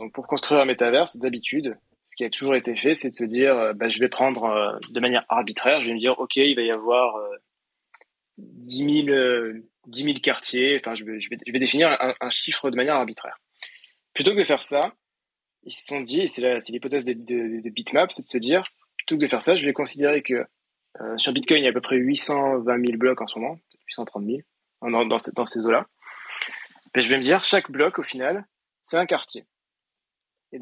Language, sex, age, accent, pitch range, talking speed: English, male, 20-39, French, 120-145 Hz, 235 wpm